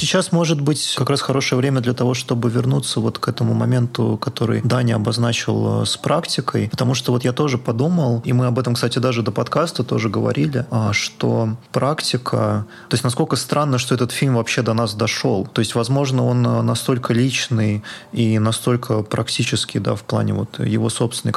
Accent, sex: native, male